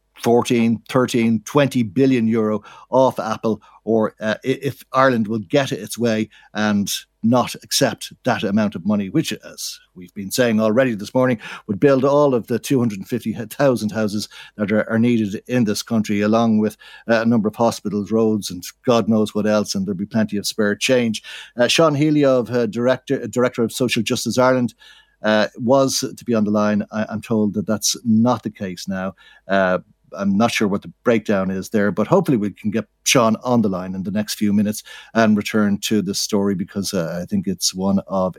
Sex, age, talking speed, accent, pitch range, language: male, 60-79, 195 wpm, Irish, 105-130 Hz, English